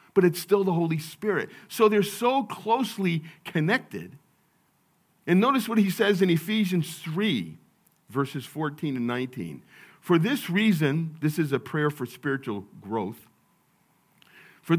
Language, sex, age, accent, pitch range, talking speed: English, male, 50-69, American, 150-210 Hz, 140 wpm